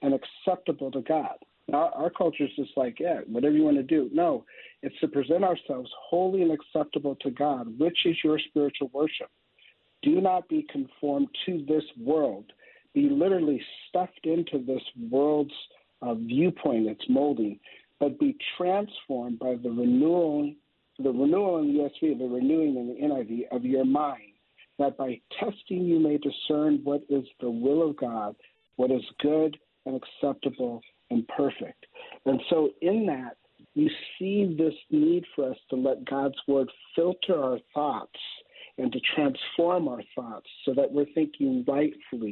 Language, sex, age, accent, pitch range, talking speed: English, male, 60-79, American, 135-185 Hz, 155 wpm